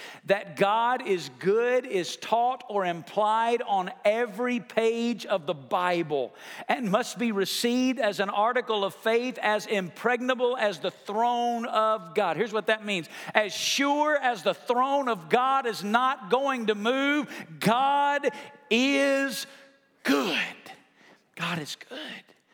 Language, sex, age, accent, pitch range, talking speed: English, male, 50-69, American, 190-240 Hz, 140 wpm